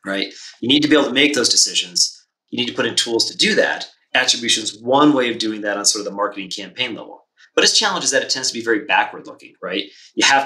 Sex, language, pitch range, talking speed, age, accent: male, English, 110-150 Hz, 270 wpm, 30-49, American